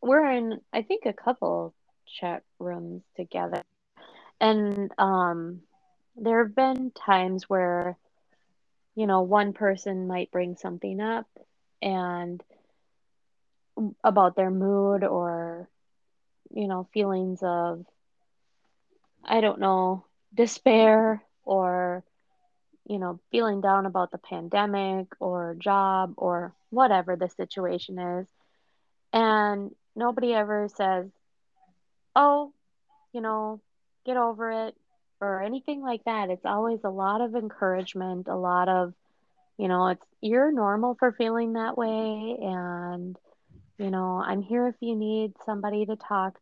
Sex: female